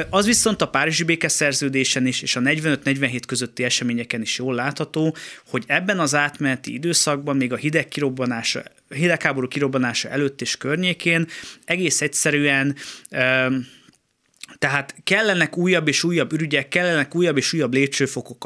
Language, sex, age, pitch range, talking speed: Hungarian, male, 20-39, 125-160 Hz, 135 wpm